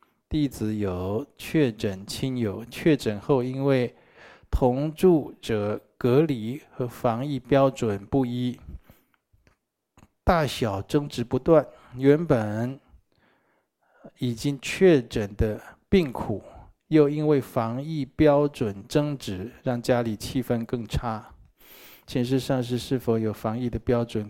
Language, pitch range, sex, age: Chinese, 115-140 Hz, male, 20-39